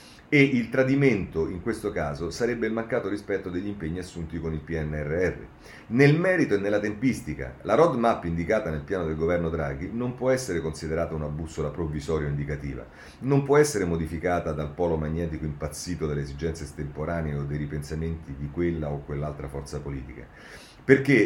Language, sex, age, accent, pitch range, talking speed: Italian, male, 40-59, native, 80-120 Hz, 165 wpm